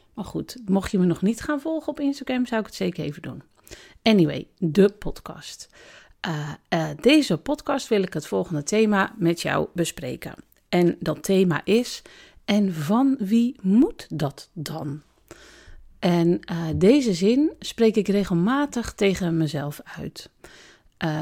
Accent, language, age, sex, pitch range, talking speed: Dutch, Dutch, 40-59, female, 160-225 Hz, 150 wpm